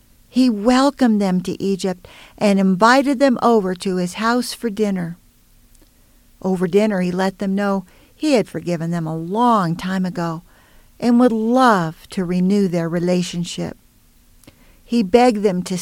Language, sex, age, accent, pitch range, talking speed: English, female, 50-69, American, 180-235 Hz, 150 wpm